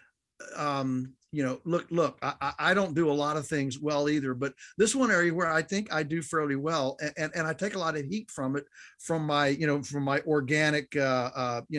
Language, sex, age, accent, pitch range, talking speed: English, male, 50-69, American, 145-180 Hz, 240 wpm